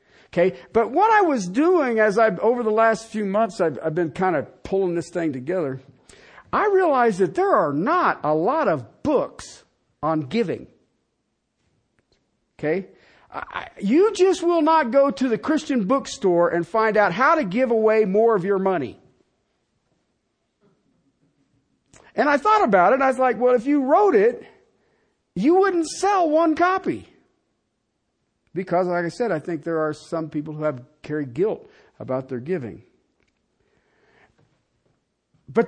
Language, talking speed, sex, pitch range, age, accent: English, 155 wpm, male, 175-270 Hz, 50-69, American